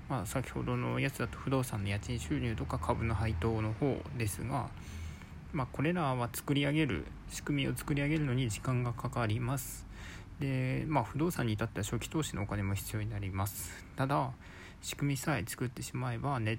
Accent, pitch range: native, 100-135 Hz